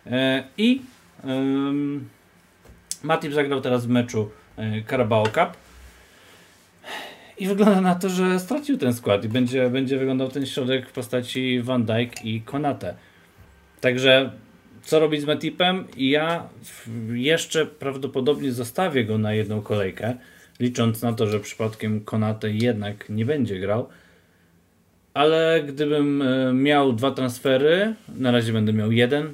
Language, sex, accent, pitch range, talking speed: Polish, male, native, 110-140 Hz, 125 wpm